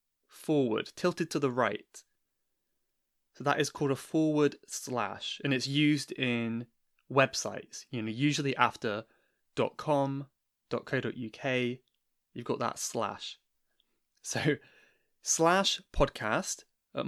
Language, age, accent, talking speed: English, 20-39, British, 110 wpm